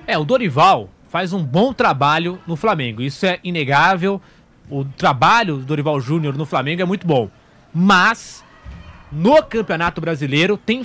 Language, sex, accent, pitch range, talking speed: English, male, Brazilian, 165-235 Hz, 150 wpm